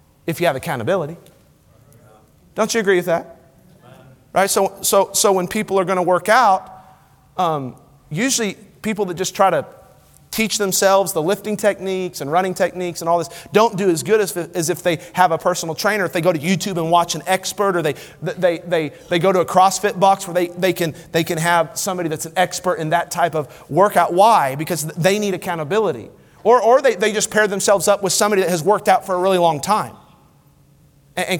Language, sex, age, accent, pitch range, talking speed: English, male, 40-59, American, 165-210 Hz, 210 wpm